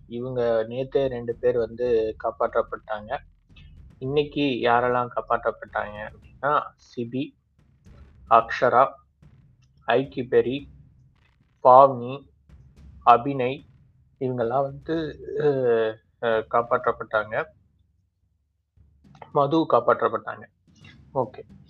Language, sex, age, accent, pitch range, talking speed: Tamil, male, 20-39, native, 115-160 Hz, 60 wpm